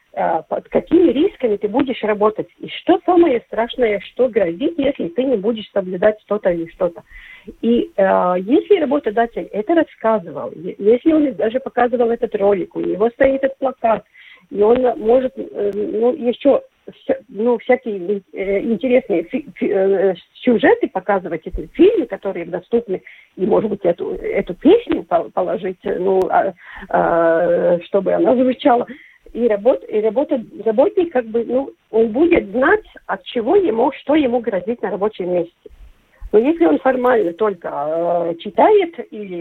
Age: 40-59